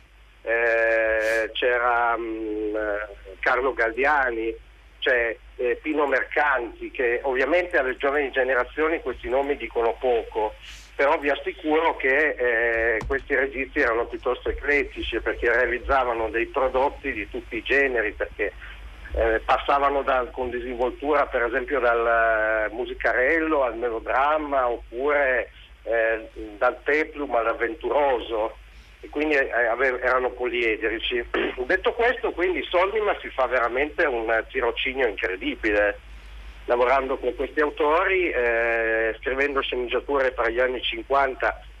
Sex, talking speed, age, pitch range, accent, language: male, 115 wpm, 50-69, 115-180 Hz, native, Italian